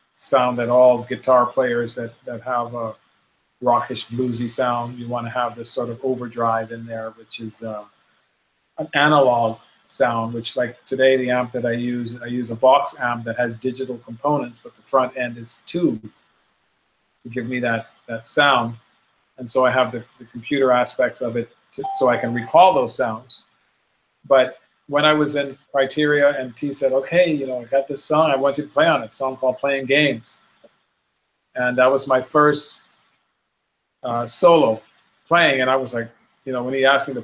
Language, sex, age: English, male, 40-59